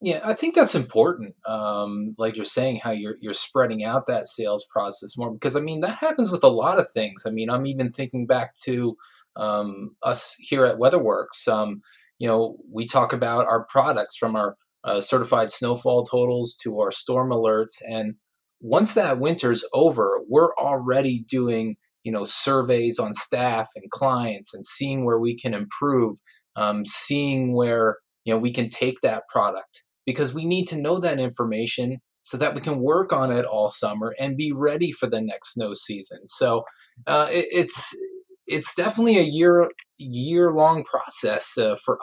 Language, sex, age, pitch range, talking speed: English, male, 20-39, 115-150 Hz, 180 wpm